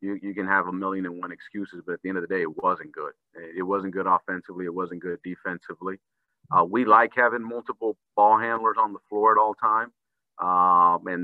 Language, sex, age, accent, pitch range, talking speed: English, male, 40-59, American, 90-100 Hz, 220 wpm